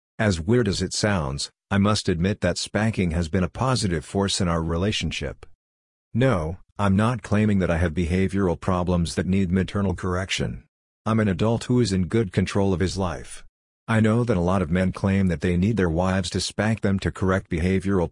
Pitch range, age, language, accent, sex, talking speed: 85-105 Hz, 50-69, English, American, male, 200 wpm